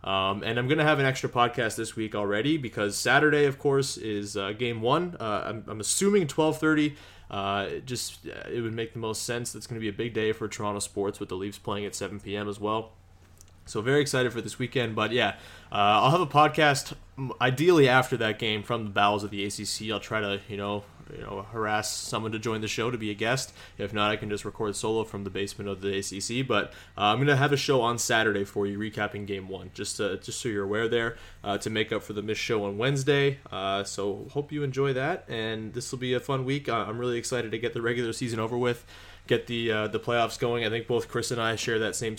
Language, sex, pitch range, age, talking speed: English, male, 100-125 Hz, 20-39, 250 wpm